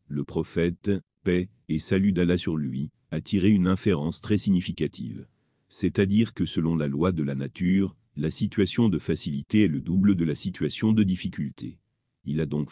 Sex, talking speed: male, 175 wpm